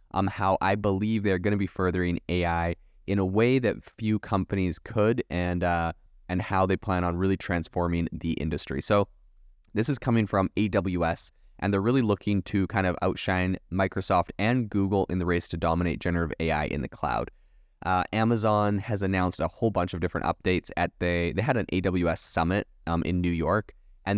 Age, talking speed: 20-39, 190 wpm